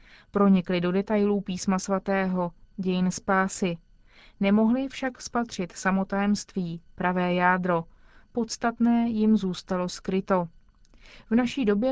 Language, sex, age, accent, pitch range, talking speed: Czech, female, 30-49, native, 185-225 Hz, 100 wpm